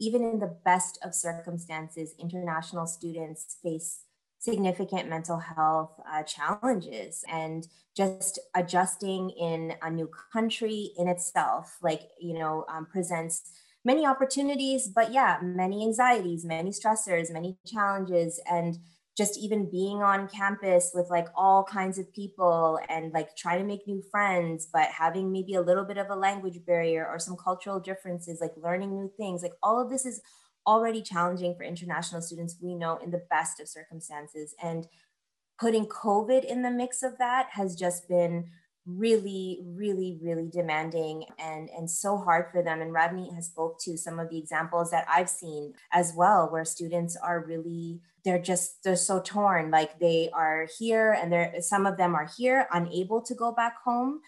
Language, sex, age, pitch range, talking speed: English, female, 20-39, 165-195 Hz, 170 wpm